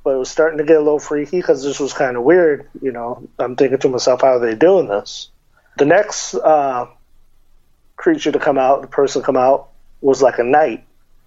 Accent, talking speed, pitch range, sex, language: American, 225 wpm, 120-150 Hz, male, English